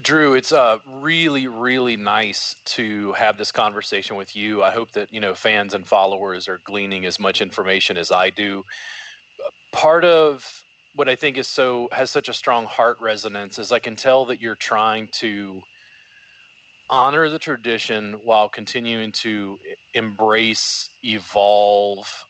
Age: 30-49